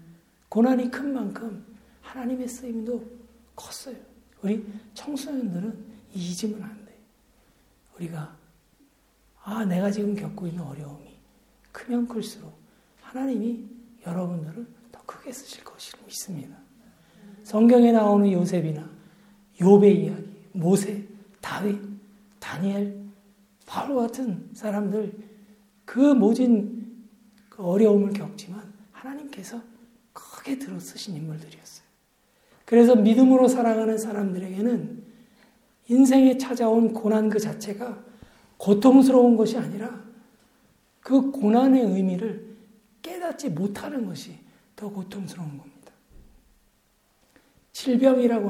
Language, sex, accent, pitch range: Korean, male, native, 200-240 Hz